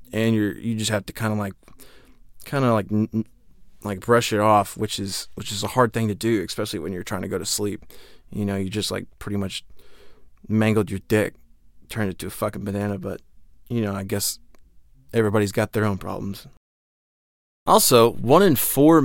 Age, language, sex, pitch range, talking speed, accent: 20-39, English, male, 105-125 Hz, 200 wpm, American